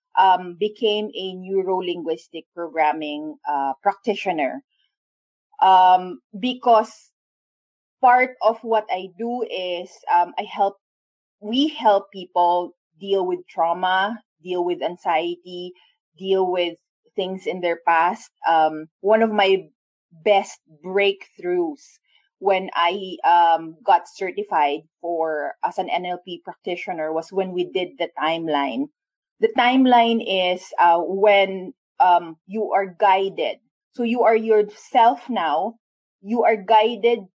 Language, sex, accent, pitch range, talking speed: English, female, Filipino, 180-230 Hz, 115 wpm